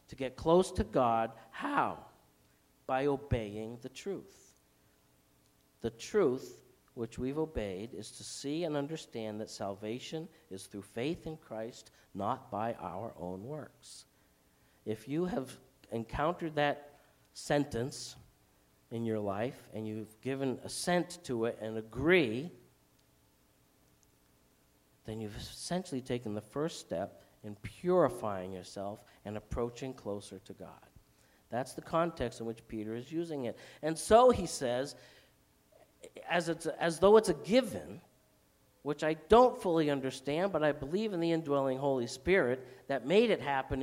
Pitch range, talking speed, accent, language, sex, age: 100-165 Hz, 135 wpm, American, English, male, 50-69